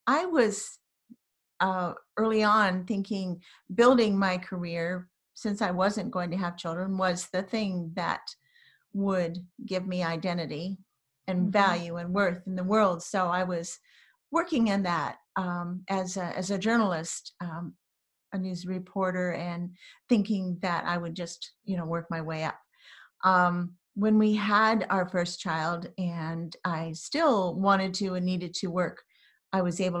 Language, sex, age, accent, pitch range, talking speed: English, female, 50-69, American, 175-210 Hz, 155 wpm